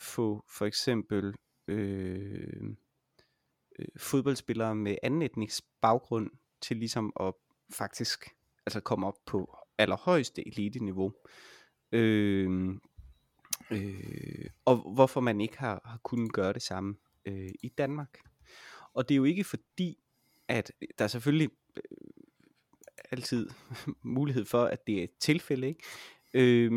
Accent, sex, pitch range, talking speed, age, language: native, male, 100-130 Hz, 125 wpm, 30-49, Danish